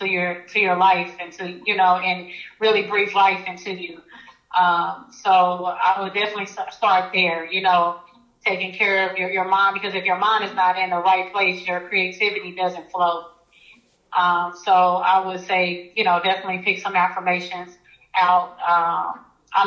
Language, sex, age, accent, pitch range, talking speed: English, female, 30-49, American, 180-200 Hz, 175 wpm